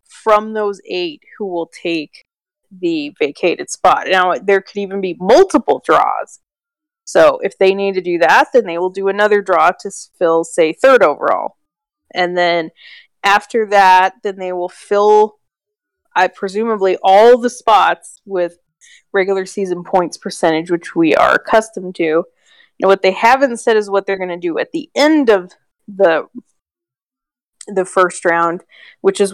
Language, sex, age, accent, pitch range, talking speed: English, female, 20-39, American, 180-220 Hz, 160 wpm